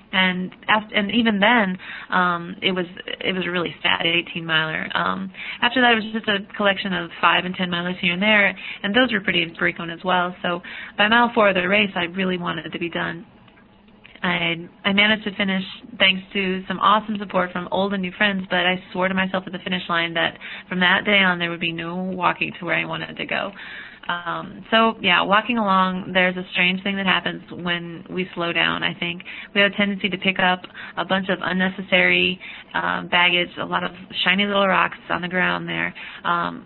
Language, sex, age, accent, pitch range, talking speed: English, female, 30-49, American, 175-205 Hz, 220 wpm